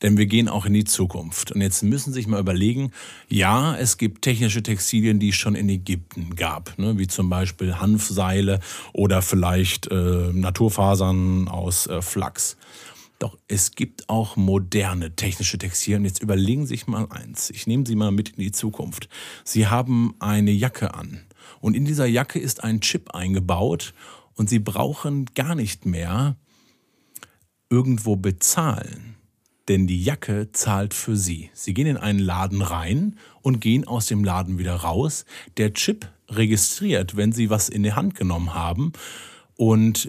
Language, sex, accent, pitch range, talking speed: German, male, German, 95-120 Hz, 165 wpm